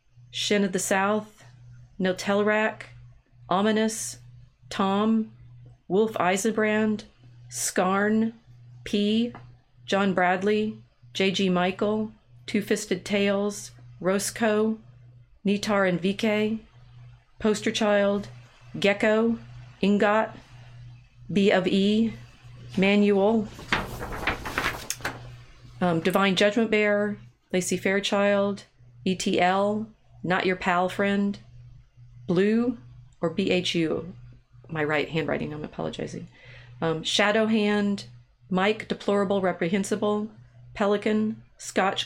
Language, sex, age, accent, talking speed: English, female, 40-59, American, 75 wpm